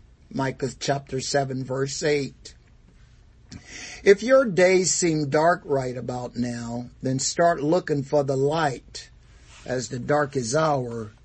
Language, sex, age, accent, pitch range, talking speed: English, male, 60-79, American, 130-180 Hz, 125 wpm